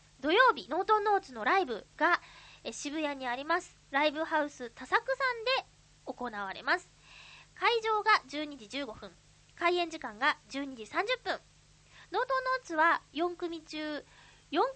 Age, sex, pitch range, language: 20-39, female, 260-360 Hz, Japanese